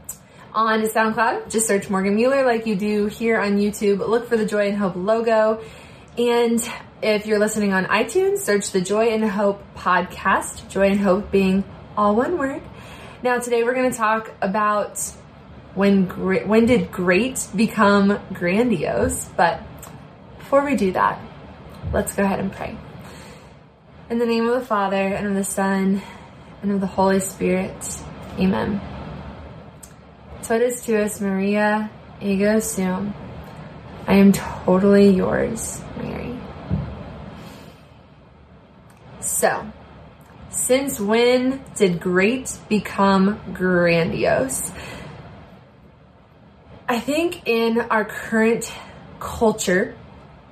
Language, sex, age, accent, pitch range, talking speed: English, female, 20-39, American, 195-230 Hz, 120 wpm